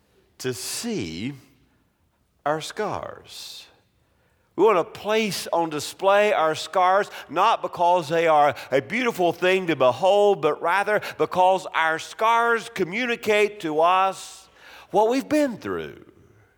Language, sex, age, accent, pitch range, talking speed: English, male, 50-69, American, 140-210 Hz, 120 wpm